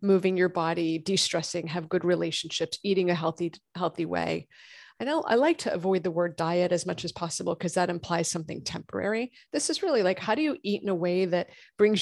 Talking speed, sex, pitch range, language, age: 215 wpm, female, 180-235 Hz, English, 30-49